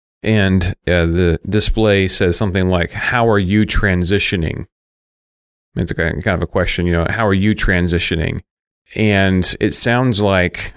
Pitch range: 85-105 Hz